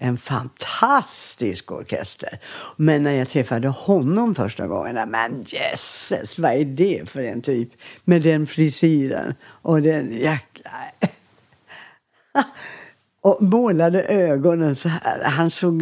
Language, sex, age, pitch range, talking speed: English, female, 60-79, 130-170 Hz, 120 wpm